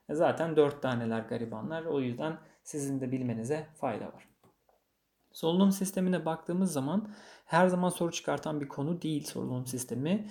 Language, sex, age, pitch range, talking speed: Turkish, male, 40-59, 130-155 Hz, 140 wpm